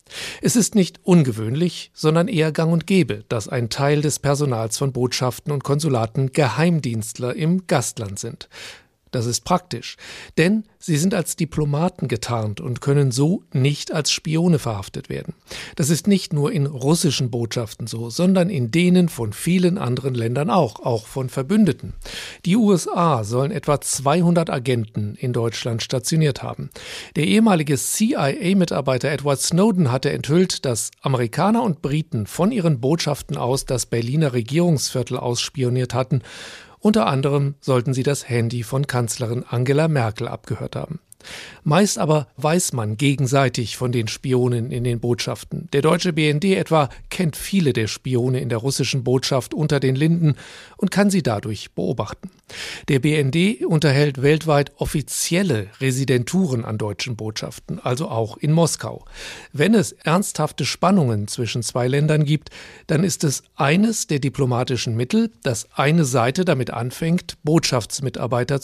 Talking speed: 145 wpm